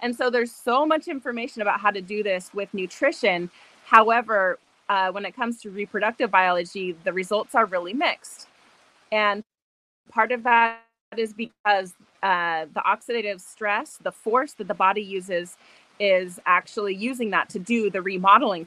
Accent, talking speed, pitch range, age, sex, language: American, 160 wpm, 185-225 Hz, 20-39, female, English